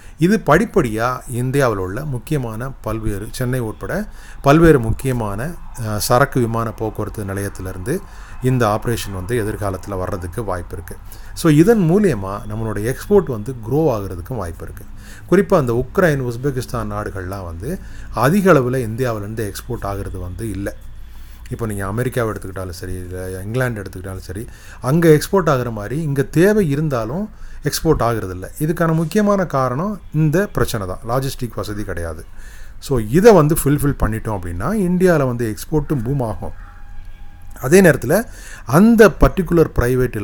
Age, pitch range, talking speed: 30-49, 100-140 Hz, 125 wpm